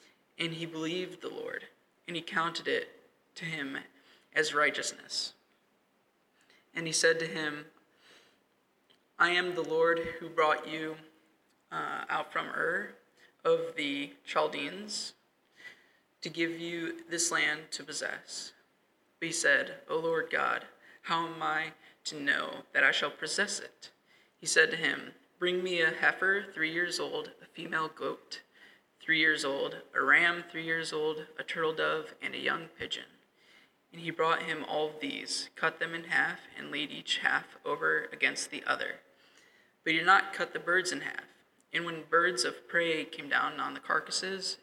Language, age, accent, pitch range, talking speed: English, 20-39, American, 160-195 Hz, 165 wpm